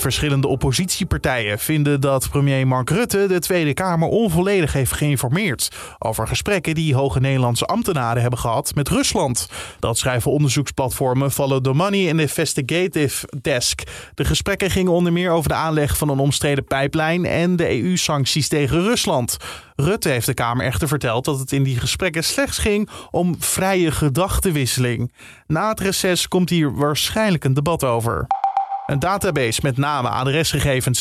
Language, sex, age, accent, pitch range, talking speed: Dutch, male, 20-39, Dutch, 135-175 Hz, 155 wpm